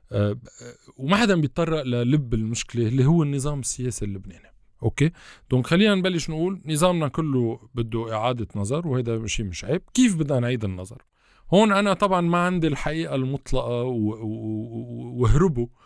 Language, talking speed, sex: Arabic, 135 wpm, male